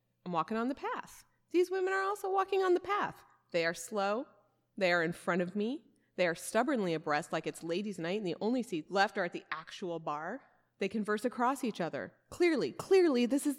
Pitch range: 195-270 Hz